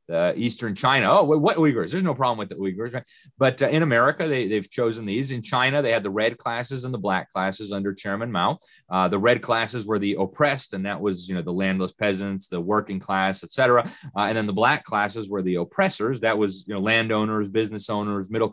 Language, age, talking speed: English, 30-49, 230 wpm